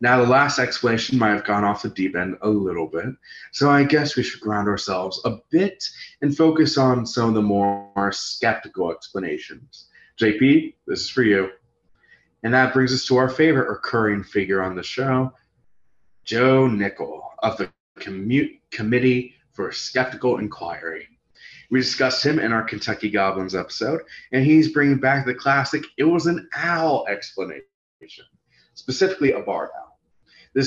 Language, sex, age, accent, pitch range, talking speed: English, male, 30-49, American, 100-130 Hz, 160 wpm